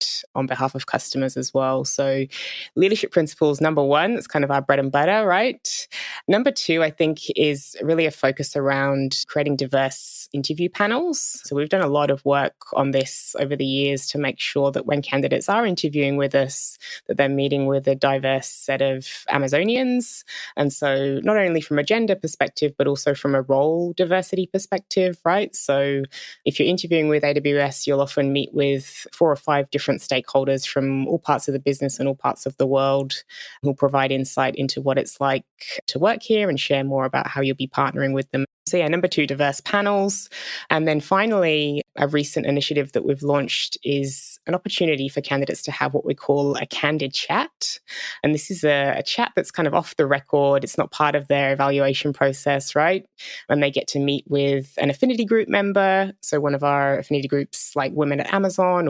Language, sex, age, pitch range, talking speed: English, female, 20-39, 140-155 Hz, 200 wpm